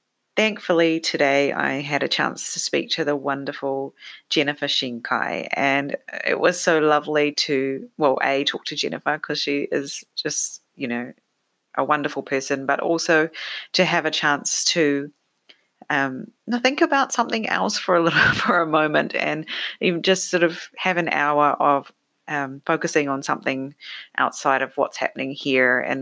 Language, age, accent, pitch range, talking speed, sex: English, 30-49, Australian, 140-180 Hz, 160 wpm, female